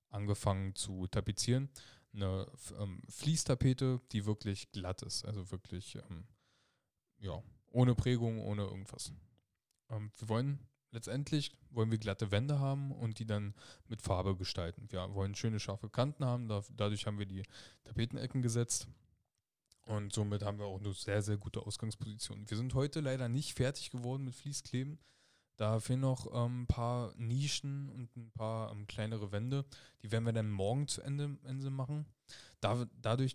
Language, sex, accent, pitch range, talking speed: German, male, German, 105-125 Hz, 155 wpm